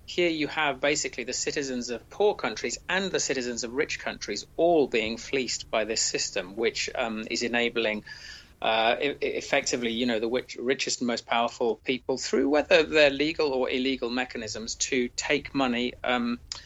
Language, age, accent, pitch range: English, 30-49, British, 125-145 Hz